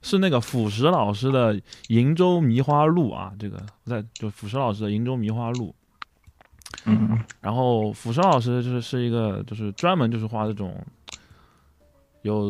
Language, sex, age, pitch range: Chinese, male, 20-39, 100-125 Hz